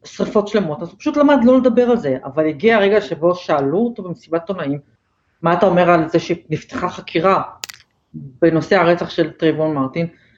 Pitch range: 170-230 Hz